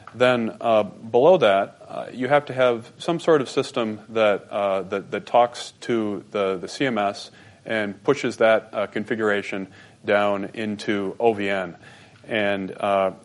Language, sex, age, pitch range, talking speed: English, male, 30-49, 100-120 Hz, 145 wpm